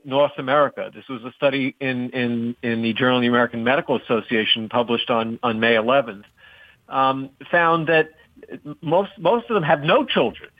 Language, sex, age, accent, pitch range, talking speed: English, male, 50-69, American, 120-165 Hz, 175 wpm